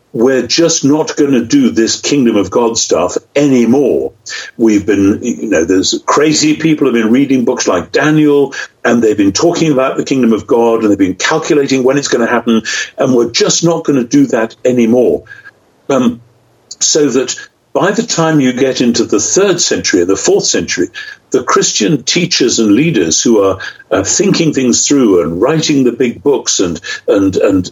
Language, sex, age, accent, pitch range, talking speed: English, male, 60-79, British, 115-175 Hz, 190 wpm